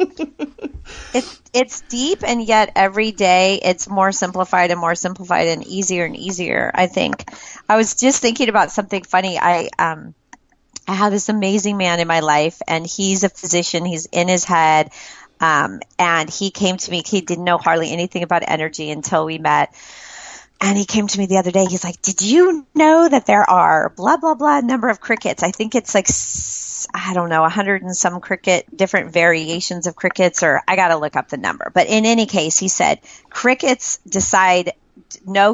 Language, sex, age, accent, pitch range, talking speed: English, female, 40-59, American, 175-220 Hz, 195 wpm